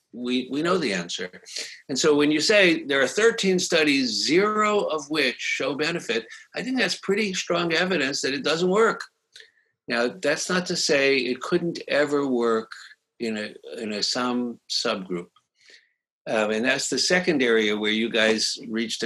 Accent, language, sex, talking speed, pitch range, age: American, English, male, 170 wpm, 125-190 Hz, 60-79